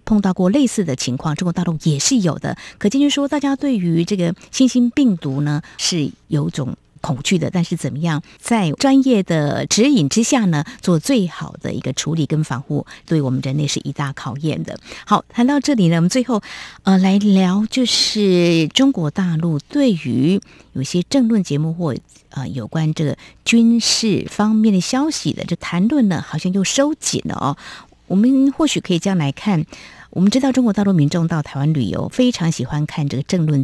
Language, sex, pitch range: Chinese, female, 145-200 Hz